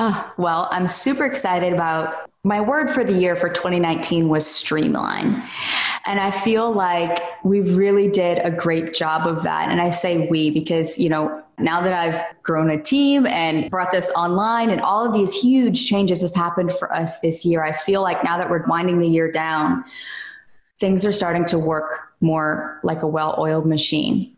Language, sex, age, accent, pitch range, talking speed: English, female, 20-39, American, 160-195 Hz, 185 wpm